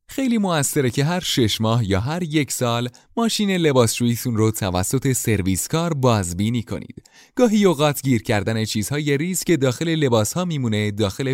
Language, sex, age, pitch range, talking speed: Persian, male, 30-49, 105-155 Hz, 150 wpm